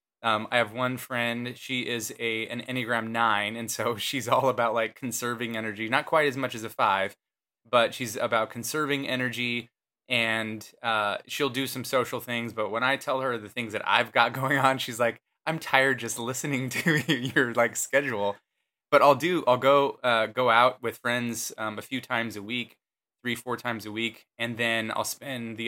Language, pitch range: English, 115-130 Hz